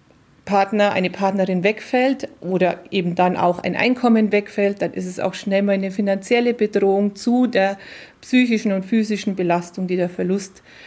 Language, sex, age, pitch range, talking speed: German, female, 30-49, 200-235 Hz, 160 wpm